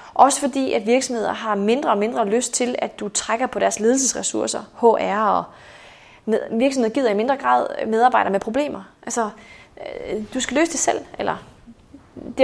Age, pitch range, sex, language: 30-49, 215-265 Hz, female, Danish